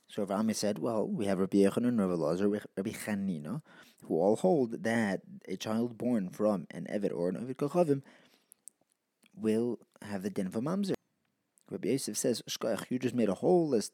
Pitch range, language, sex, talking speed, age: 100-140 Hz, English, male, 195 wpm, 20-39